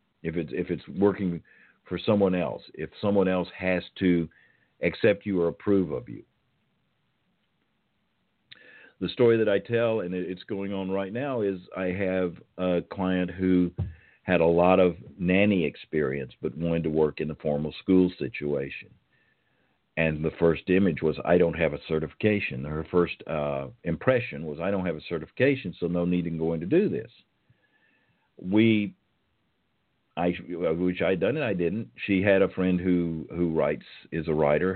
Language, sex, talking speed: English, male, 170 wpm